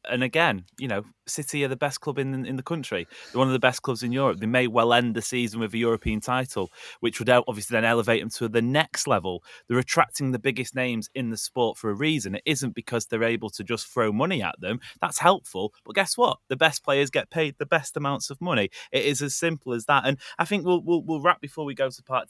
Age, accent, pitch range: 30-49, British, 110-140 Hz